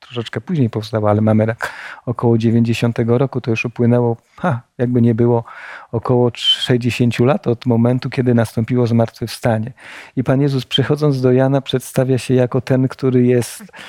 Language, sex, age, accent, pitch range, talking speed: Polish, male, 40-59, native, 130-160 Hz, 150 wpm